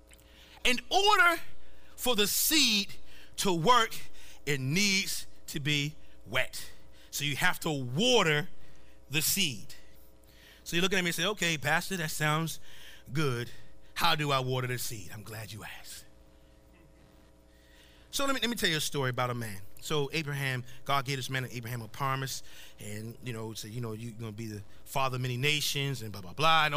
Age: 30-49